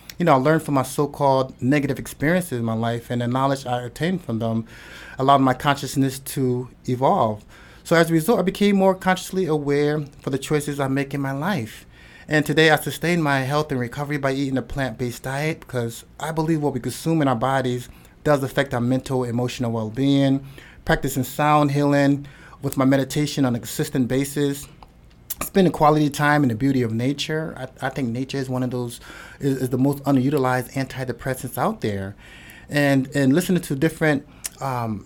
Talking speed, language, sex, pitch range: 185 wpm, English, male, 125-150 Hz